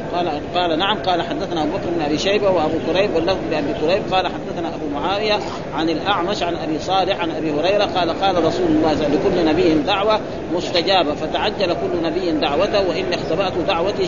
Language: Arabic